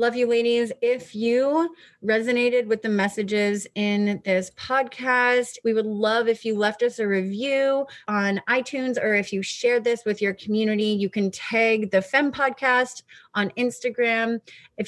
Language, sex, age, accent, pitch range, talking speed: English, female, 30-49, American, 200-245 Hz, 160 wpm